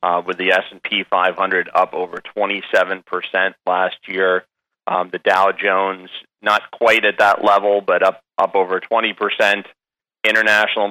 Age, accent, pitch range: 30-49, American, 95-105 Hz